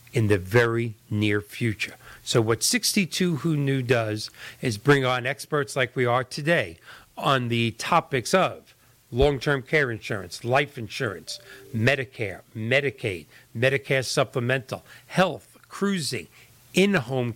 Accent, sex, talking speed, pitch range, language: American, male, 120 wpm, 115-140 Hz, English